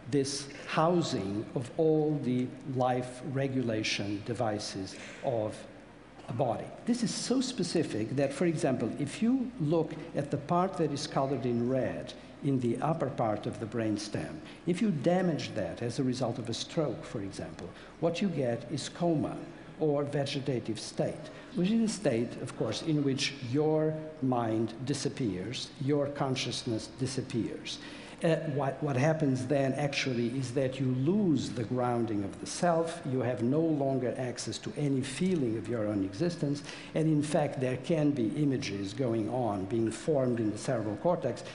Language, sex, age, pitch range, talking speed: Italian, male, 60-79, 125-155 Hz, 165 wpm